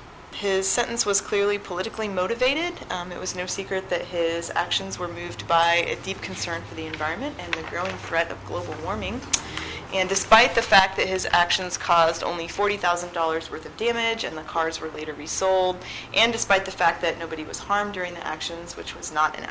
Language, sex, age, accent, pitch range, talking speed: English, female, 30-49, American, 170-205 Hz, 195 wpm